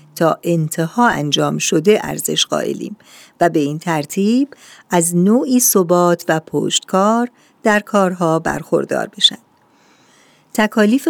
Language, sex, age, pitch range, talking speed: Persian, female, 50-69, 165-215 Hz, 110 wpm